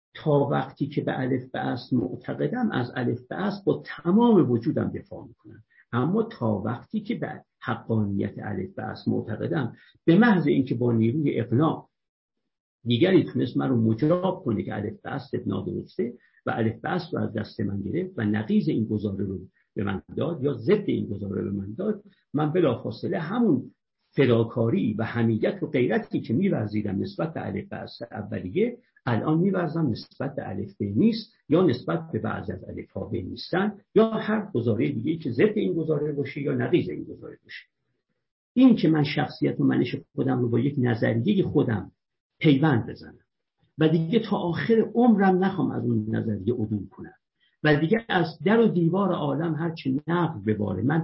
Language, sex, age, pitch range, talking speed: Persian, male, 50-69, 110-175 Hz, 170 wpm